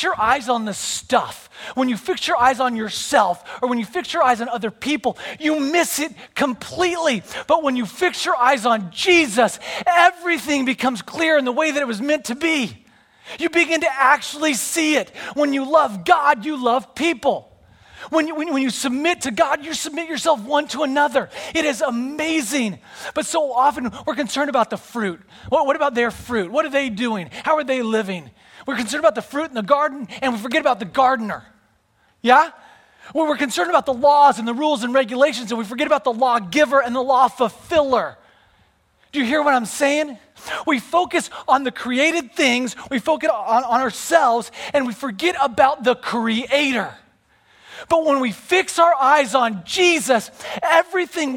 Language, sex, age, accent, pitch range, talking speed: English, male, 30-49, American, 240-310 Hz, 190 wpm